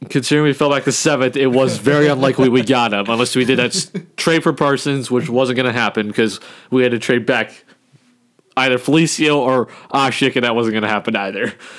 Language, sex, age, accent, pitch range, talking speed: English, male, 20-39, American, 115-140 Hz, 215 wpm